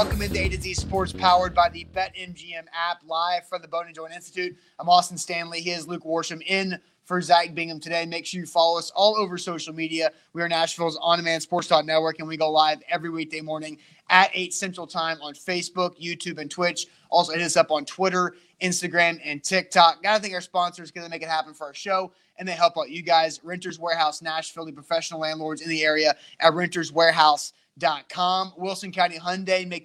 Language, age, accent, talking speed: English, 20-39, American, 210 wpm